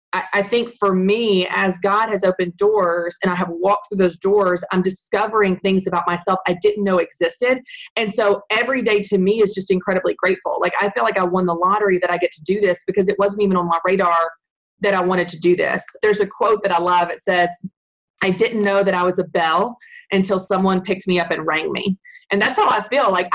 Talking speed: 235 wpm